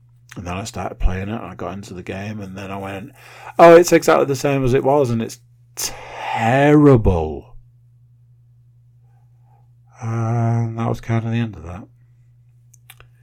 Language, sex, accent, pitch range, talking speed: English, male, British, 100-120 Hz, 165 wpm